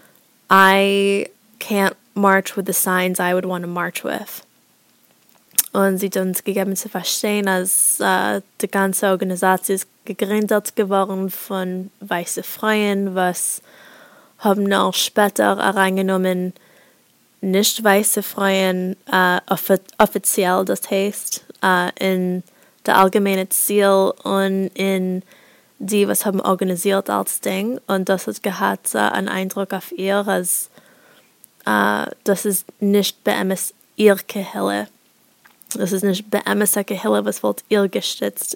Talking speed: 120 wpm